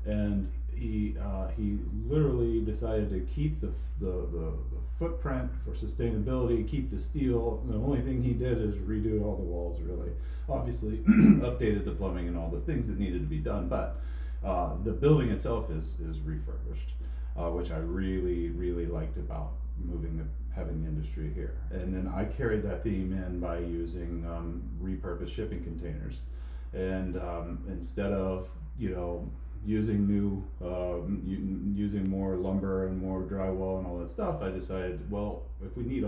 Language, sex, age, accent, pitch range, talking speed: English, male, 30-49, American, 75-100 Hz, 170 wpm